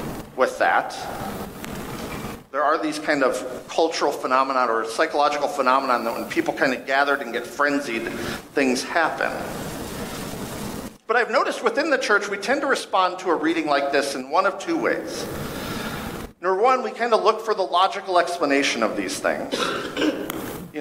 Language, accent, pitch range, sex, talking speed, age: English, American, 145-190 Hz, male, 165 wpm, 50-69